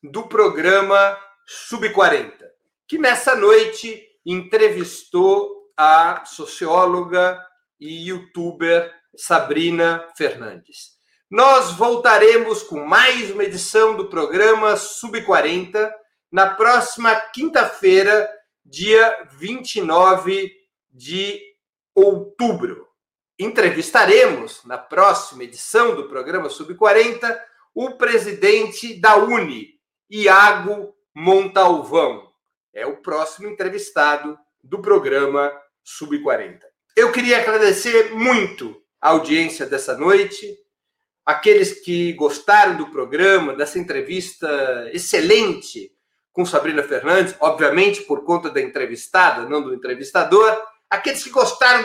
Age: 50-69